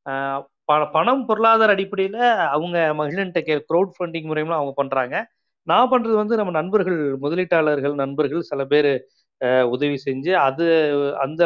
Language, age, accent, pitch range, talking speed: Tamil, 30-49, native, 145-190 Hz, 135 wpm